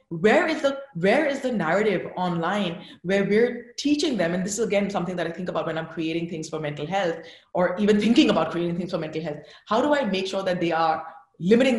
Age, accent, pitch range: 30-49, Indian, 180-245 Hz